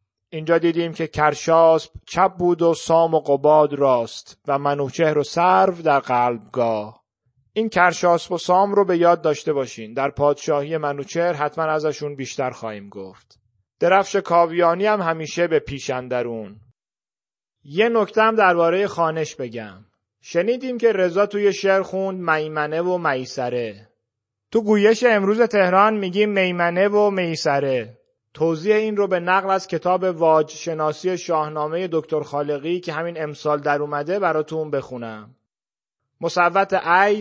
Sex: male